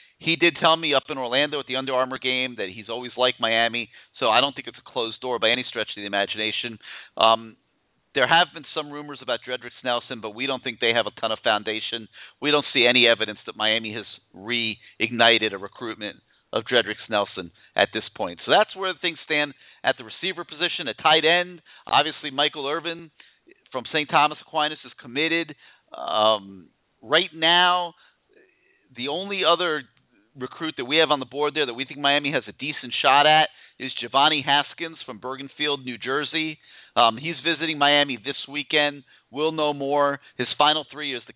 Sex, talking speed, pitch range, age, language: male, 190 wpm, 120-150 Hz, 40-59, English